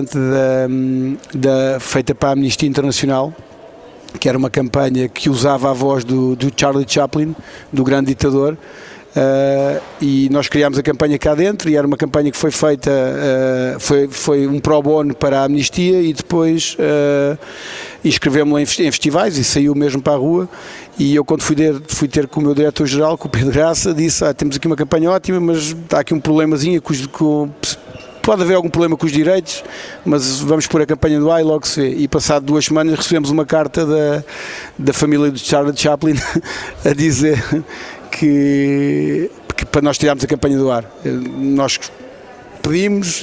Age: 50-69